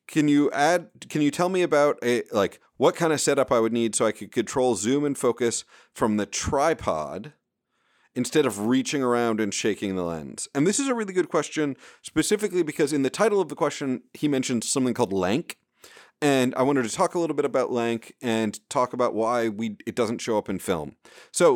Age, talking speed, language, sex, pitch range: 30-49, 215 wpm, English, male, 115-150 Hz